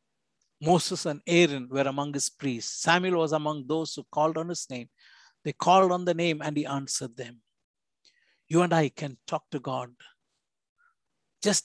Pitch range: 140-170 Hz